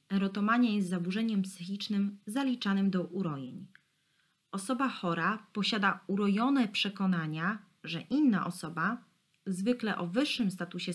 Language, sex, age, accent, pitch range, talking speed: Polish, female, 20-39, native, 175-215 Hz, 105 wpm